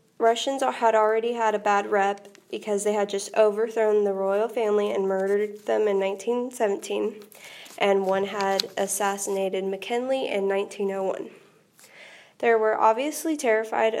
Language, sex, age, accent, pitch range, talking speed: English, female, 20-39, American, 200-225 Hz, 135 wpm